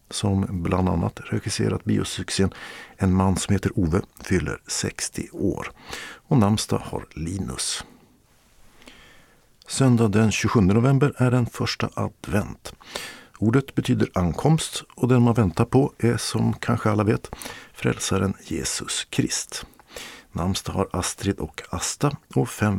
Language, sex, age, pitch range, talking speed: Swedish, male, 50-69, 95-115 Hz, 125 wpm